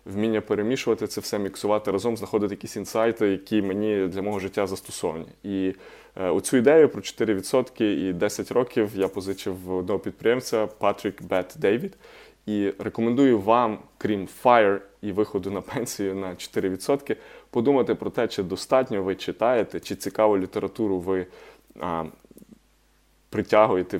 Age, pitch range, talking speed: 20-39, 95-110 Hz, 140 wpm